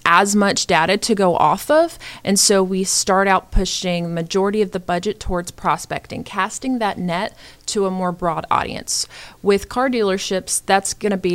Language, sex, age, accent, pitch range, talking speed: English, female, 30-49, American, 180-215 Hz, 175 wpm